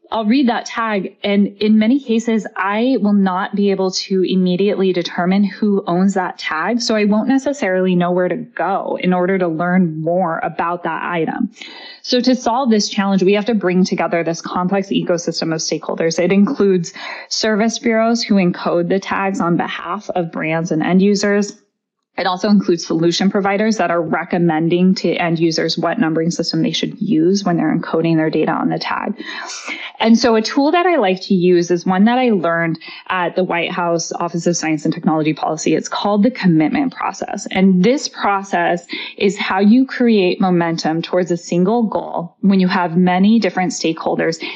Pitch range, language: 175-220 Hz, English